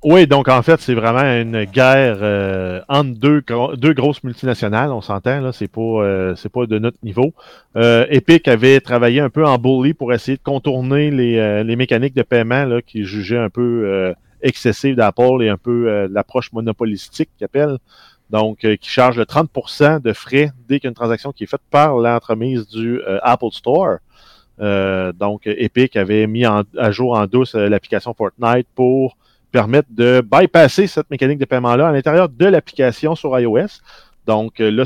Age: 30-49